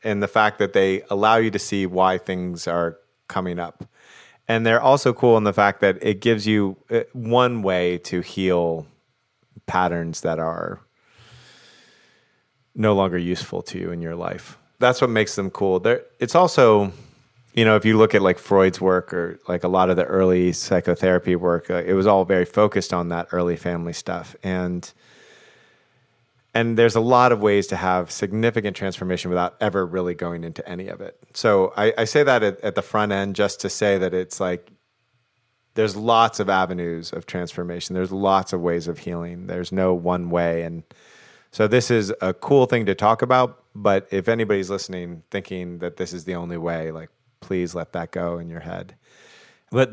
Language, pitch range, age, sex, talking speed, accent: English, 90-110 Hz, 30-49, male, 185 wpm, American